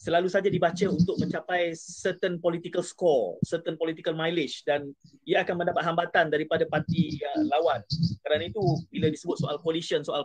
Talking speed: 160 wpm